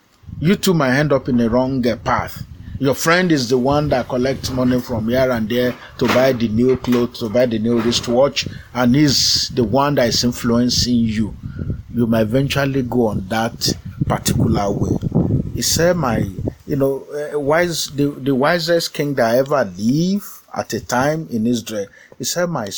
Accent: Nigerian